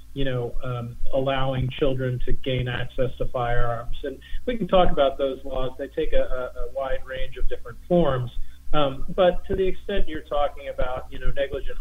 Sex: male